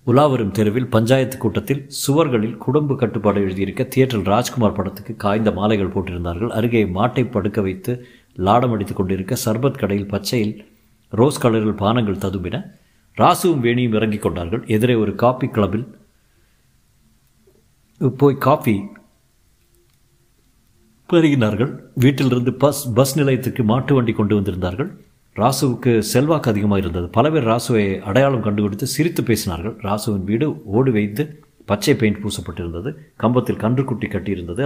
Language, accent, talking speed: Tamil, native, 120 wpm